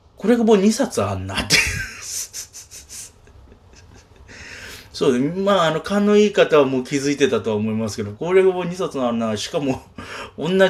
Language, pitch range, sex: Japanese, 95-150 Hz, male